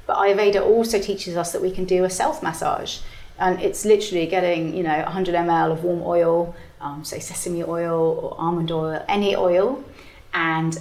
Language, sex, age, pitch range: English, female, 30-49, 170-205 Hz